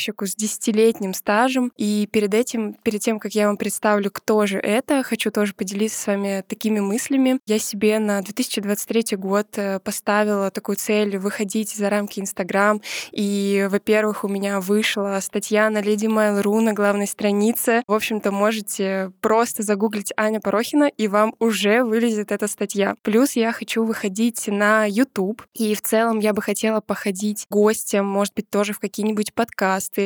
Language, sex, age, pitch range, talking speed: Russian, female, 20-39, 205-230 Hz, 160 wpm